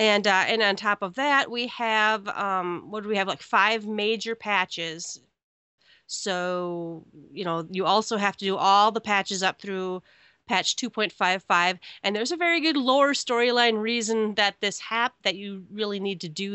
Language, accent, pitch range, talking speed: English, American, 195-240 Hz, 180 wpm